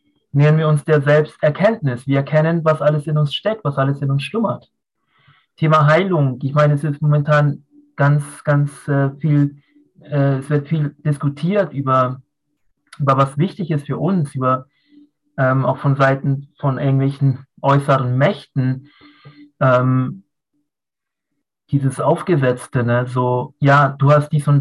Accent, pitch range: German, 140-175 Hz